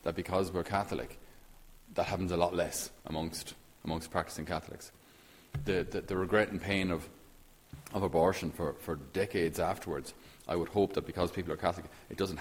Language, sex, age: English, male, 30-49